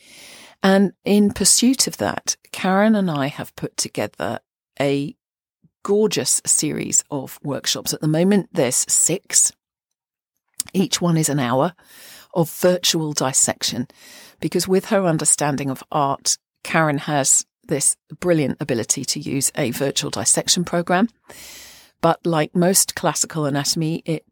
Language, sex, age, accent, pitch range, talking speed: English, female, 40-59, British, 150-190 Hz, 130 wpm